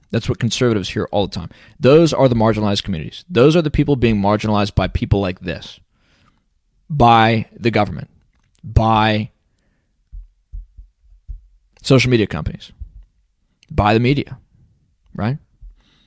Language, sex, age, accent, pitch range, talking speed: English, male, 20-39, American, 95-130 Hz, 125 wpm